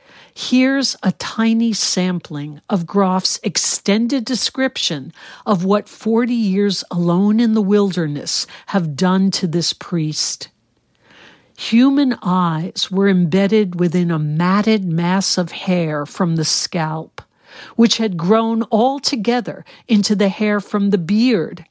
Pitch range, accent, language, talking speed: 175-225 Hz, American, English, 120 wpm